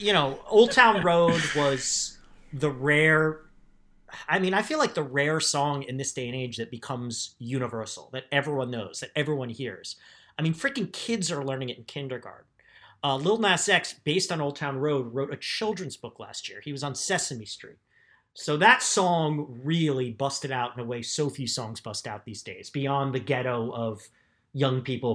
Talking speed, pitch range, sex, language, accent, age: 195 wpm, 120-165 Hz, male, English, American, 30-49